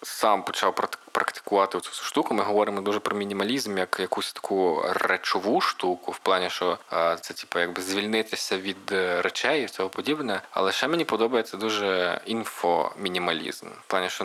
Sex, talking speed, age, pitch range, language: male, 150 wpm, 20-39, 95-110 Hz, Ukrainian